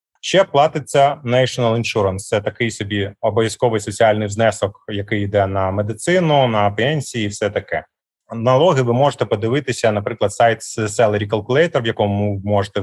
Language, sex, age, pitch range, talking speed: Ukrainian, male, 30-49, 105-130 Hz, 140 wpm